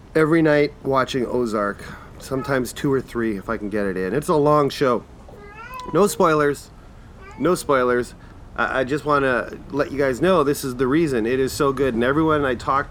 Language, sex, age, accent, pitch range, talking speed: English, male, 30-49, American, 110-140 Hz, 200 wpm